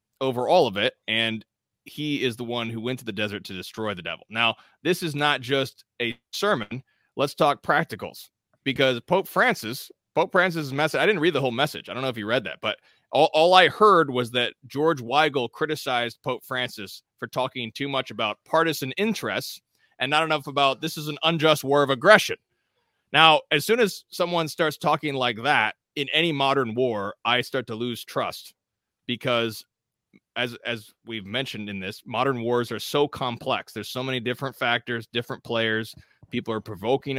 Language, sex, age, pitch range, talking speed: English, male, 30-49, 115-150 Hz, 190 wpm